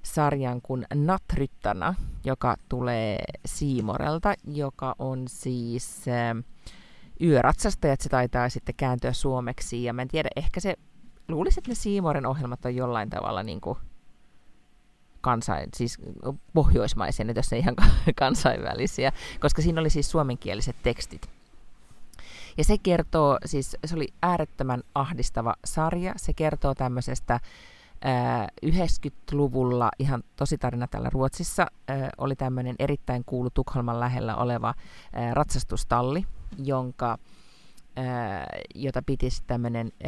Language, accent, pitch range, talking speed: Finnish, native, 120-145 Hz, 115 wpm